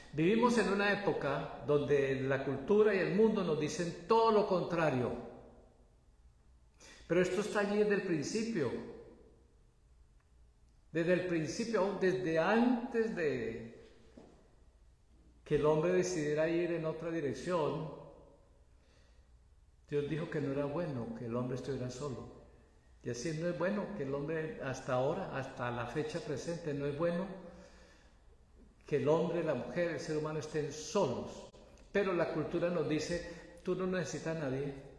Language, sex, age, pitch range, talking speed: Spanish, male, 50-69, 130-175 Hz, 145 wpm